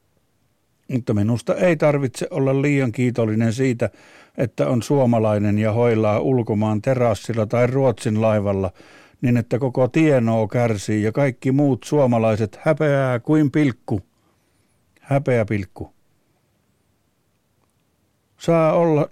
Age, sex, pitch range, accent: 60-79, male, 110-135 Hz, native